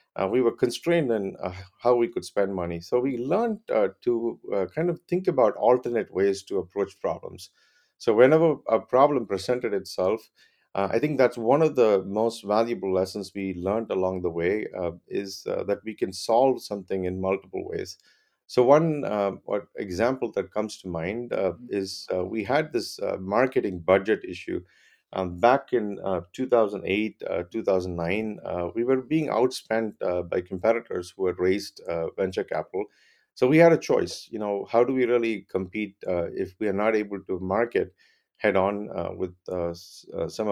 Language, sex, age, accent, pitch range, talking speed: English, male, 50-69, Indian, 95-125 Hz, 185 wpm